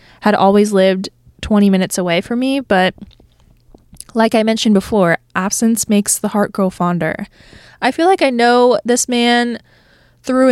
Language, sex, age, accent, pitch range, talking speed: English, female, 20-39, American, 185-230 Hz, 155 wpm